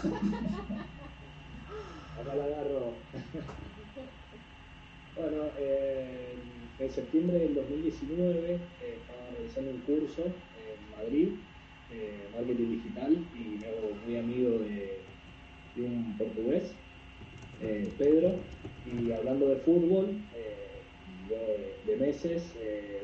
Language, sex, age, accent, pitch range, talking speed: Spanish, male, 20-39, Argentinian, 115-165 Hz, 100 wpm